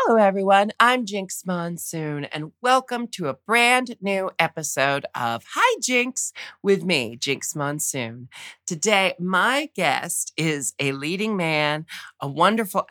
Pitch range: 145-205 Hz